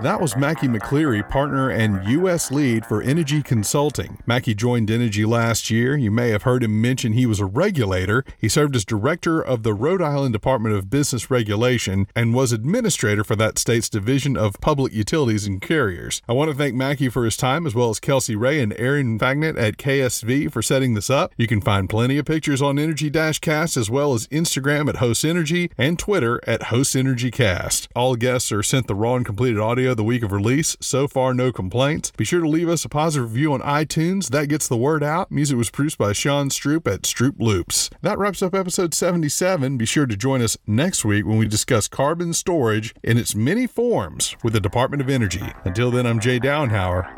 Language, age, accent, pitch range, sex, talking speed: English, 40-59, American, 110-145 Hz, male, 210 wpm